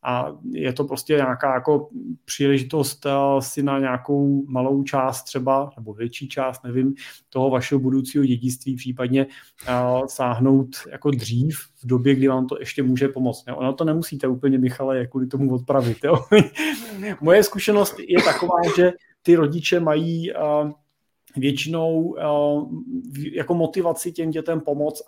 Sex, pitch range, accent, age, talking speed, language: male, 135-150 Hz, native, 30-49, 145 wpm, Czech